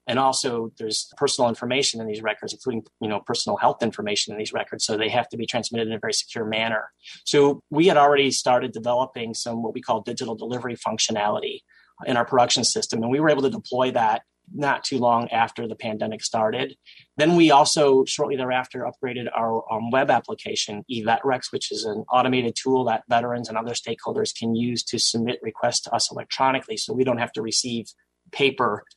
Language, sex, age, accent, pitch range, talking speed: English, male, 30-49, American, 115-135 Hz, 195 wpm